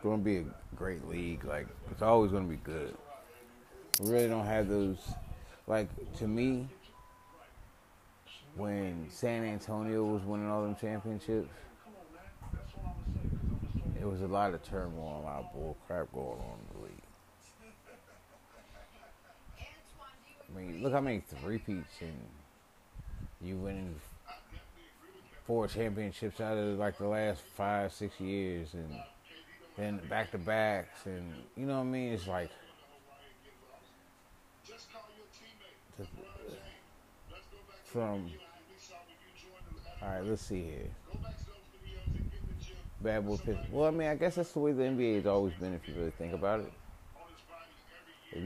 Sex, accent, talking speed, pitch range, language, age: male, American, 130 wpm, 90-110 Hz, English, 30-49